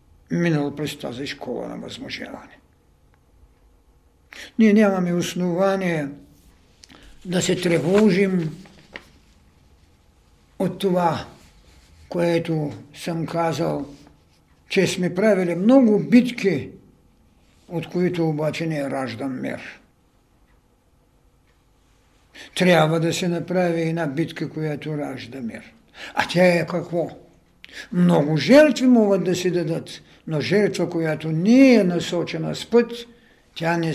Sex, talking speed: male, 100 wpm